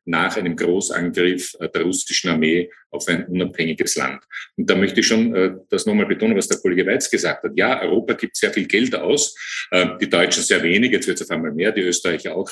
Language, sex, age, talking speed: German, male, 50-69, 220 wpm